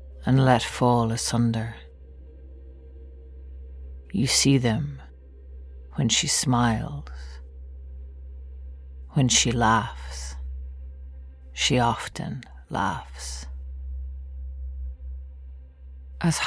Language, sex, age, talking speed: English, female, 40-59, 60 wpm